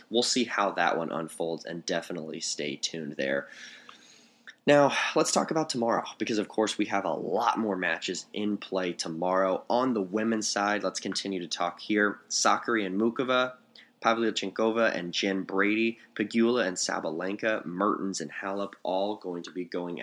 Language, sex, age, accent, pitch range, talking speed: English, male, 20-39, American, 85-105 Hz, 165 wpm